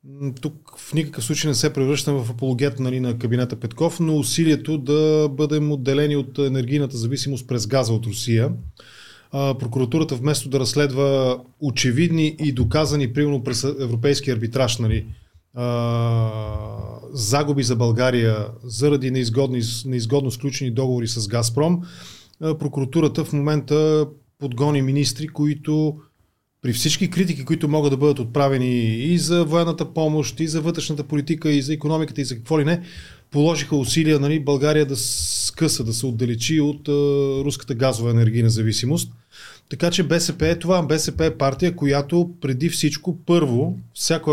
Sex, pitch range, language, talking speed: male, 125-155 Hz, Bulgarian, 145 wpm